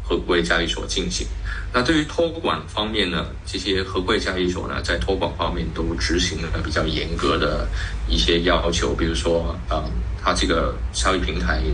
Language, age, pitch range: Chinese, 20-39, 80-95 Hz